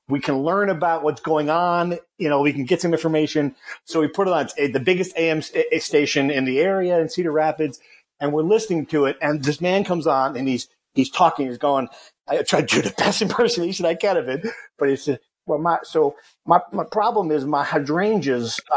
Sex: male